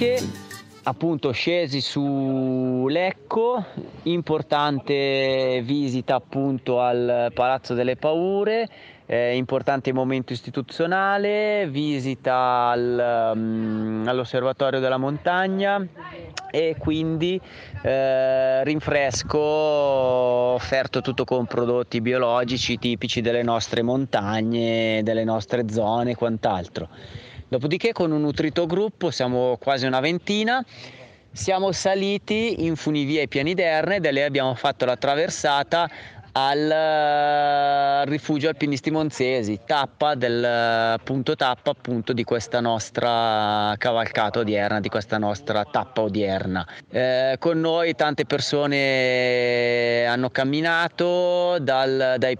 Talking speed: 95 wpm